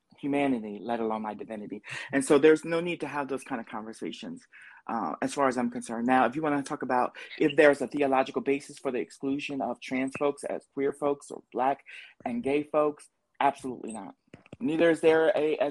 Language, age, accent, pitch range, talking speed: English, 30-49, American, 120-150 Hz, 210 wpm